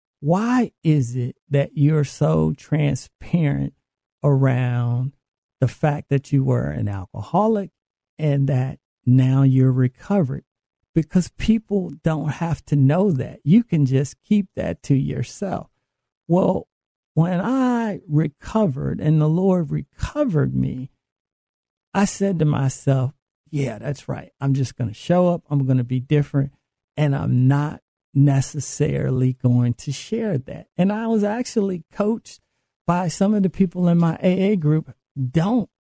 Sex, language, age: male, English, 50-69